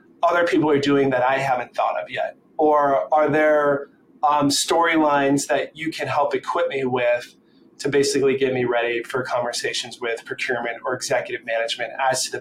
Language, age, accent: English, 30-49, American